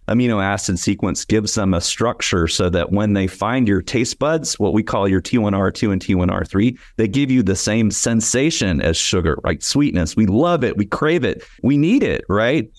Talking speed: 195 wpm